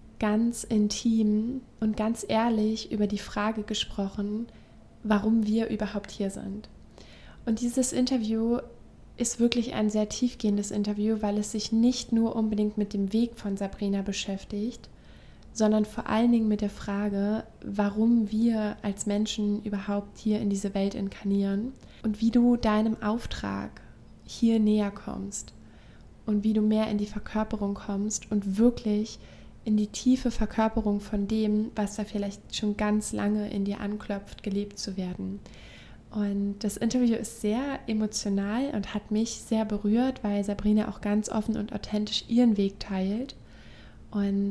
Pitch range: 205-225 Hz